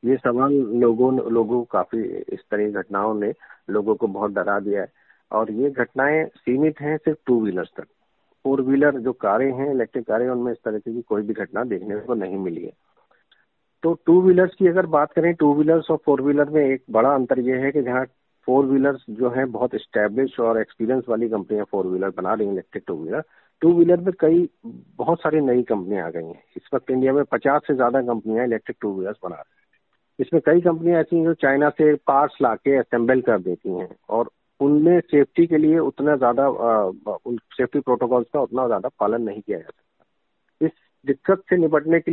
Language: Hindi